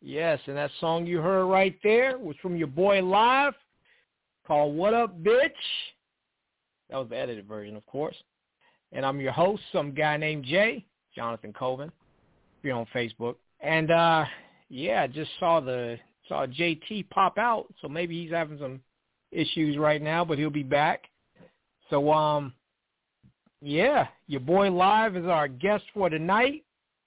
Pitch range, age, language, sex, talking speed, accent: 145-200 Hz, 50-69, English, male, 160 wpm, American